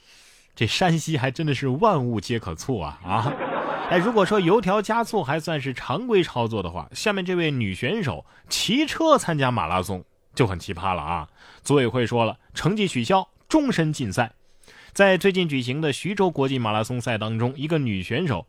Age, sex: 20-39, male